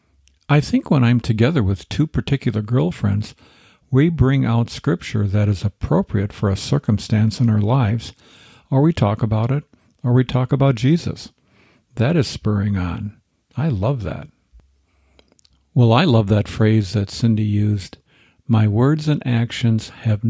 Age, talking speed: 50-69, 155 wpm